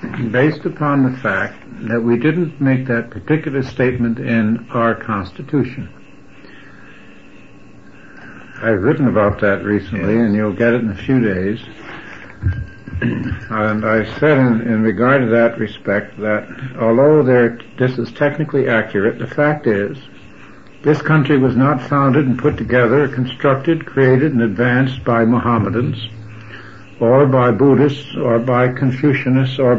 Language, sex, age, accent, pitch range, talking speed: English, male, 70-89, American, 115-140 Hz, 135 wpm